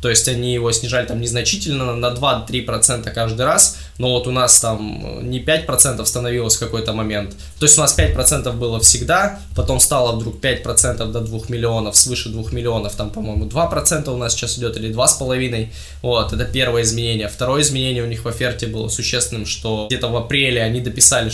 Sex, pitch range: male, 115-125 Hz